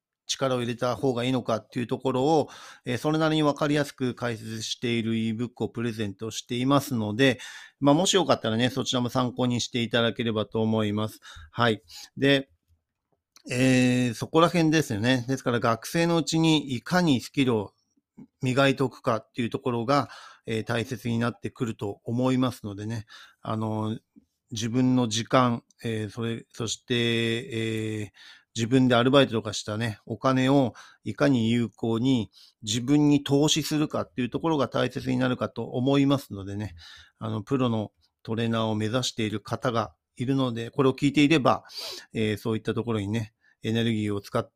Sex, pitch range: male, 115-135 Hz